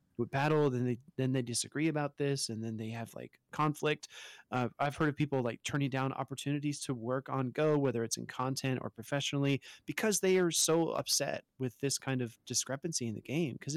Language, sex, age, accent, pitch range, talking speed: English, male, 30-49, American, 125-145 Hz, 210 wpm